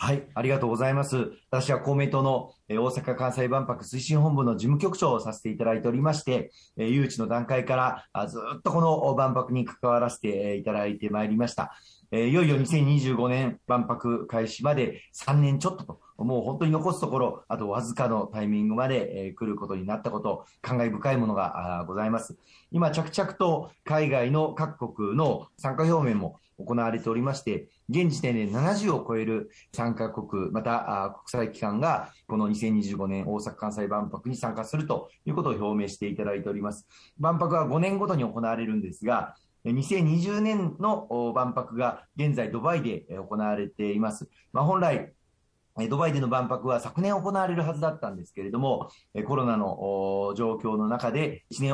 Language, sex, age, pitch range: Japanese, male, 40-59, 110-145 Hz